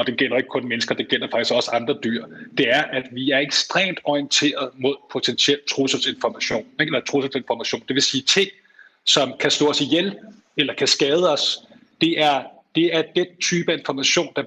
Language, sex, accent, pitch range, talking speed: Danish, male, native, 135-165 Hz, 190 wpm